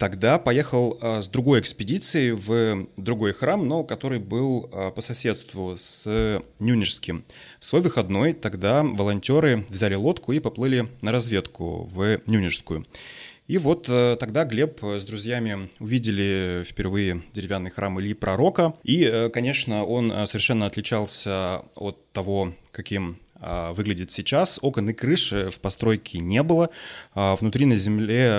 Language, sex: Russian, male